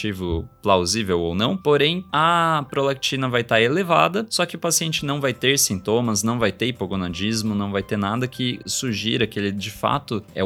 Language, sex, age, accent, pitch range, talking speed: Portuguese, male, 20-39, Brazilian, 100-135 Hz, 185 wpm